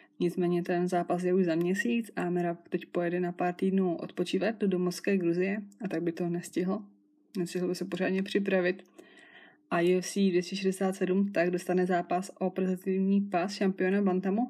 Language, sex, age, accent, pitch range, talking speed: Czech, female, 20-39, native, 180-200 Hz, 160 wpm